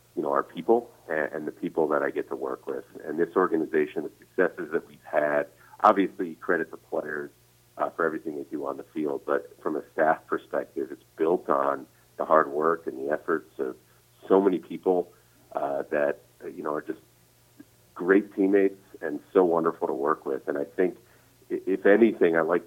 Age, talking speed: 40-59, 190 wpm